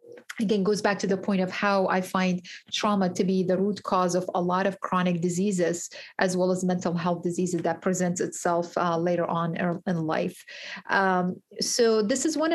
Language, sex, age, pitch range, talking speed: English, female, 30-49, 175-195 Hz, 195 wpm